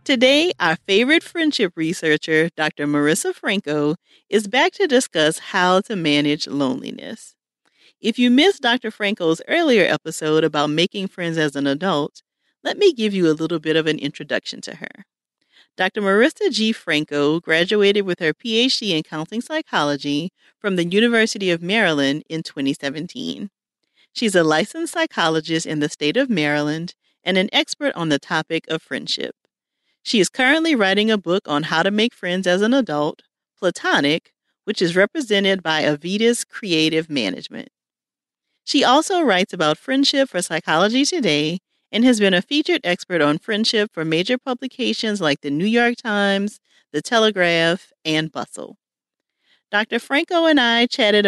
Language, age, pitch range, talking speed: English, 40-59, 155-235 Hz, 155 wpm